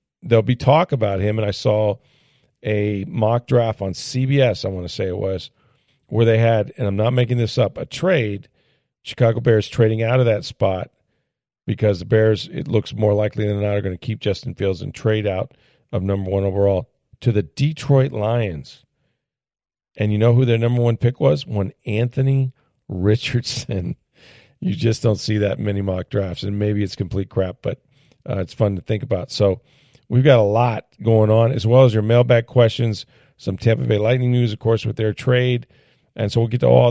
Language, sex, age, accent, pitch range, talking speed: English, male, 40-59, American, 105-125 Hz, 200 wpm